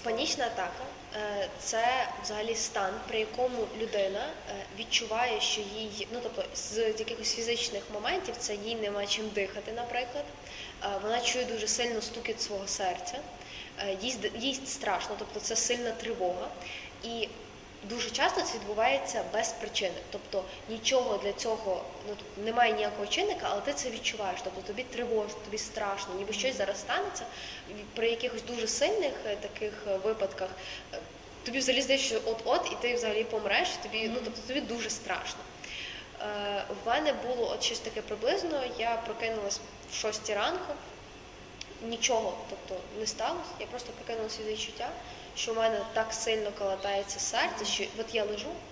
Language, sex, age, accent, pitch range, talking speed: Ukrainian, female, 10-29, native, 205-240 Hz, 145 wpm